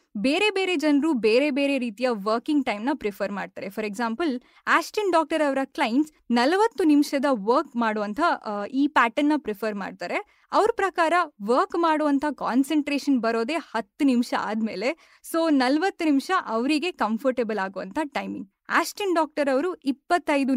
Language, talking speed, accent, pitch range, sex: Kannada, 125 wpm, native, 235-305 Hz, female